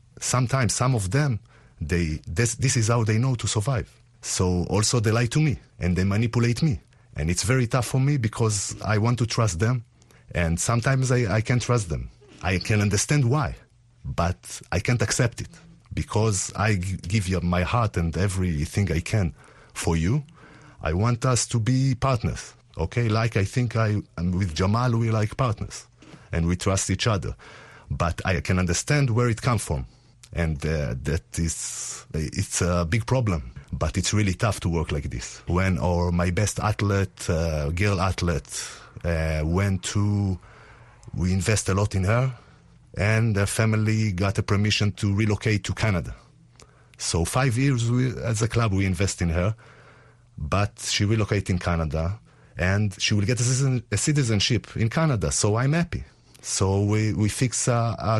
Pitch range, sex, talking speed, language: 90-120 Hz, male, 175 wpm, English